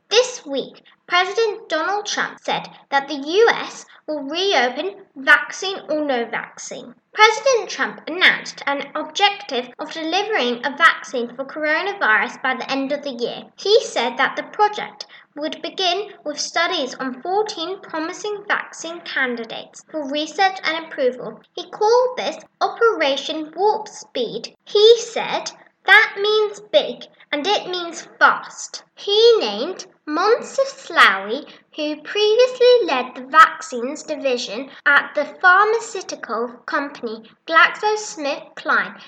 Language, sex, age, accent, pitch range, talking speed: English, female, 10-29, British, 275-410 Hz, 125 wpm